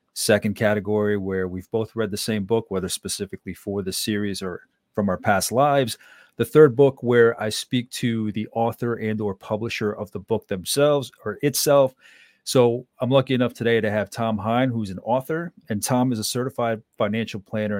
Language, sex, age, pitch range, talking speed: English, male, 40-59, 105-120 Hz, 190 wpm